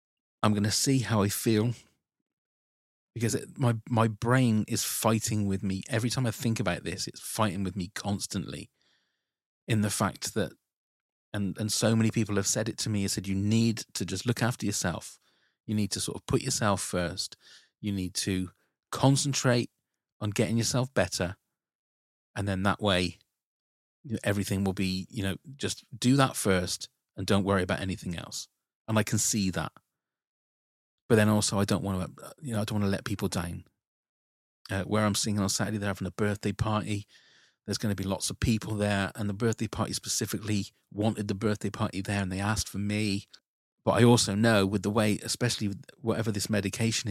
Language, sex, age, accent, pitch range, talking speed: English, male, 30-49, British, 95-110 Hz, 190 wpm